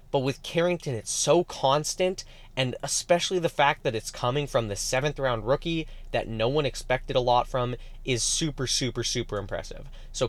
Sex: male